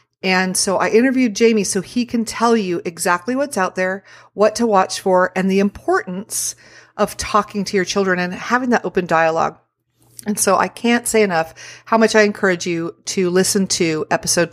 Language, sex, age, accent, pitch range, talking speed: English, female, 40-59, American, 175-215 Hz, 190 wpm